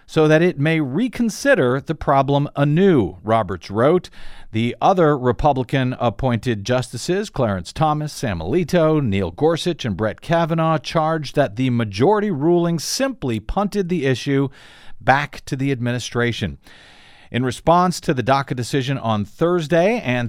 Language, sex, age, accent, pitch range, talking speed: English, male, 50-69, American, 125-185 Hz, 135 wpm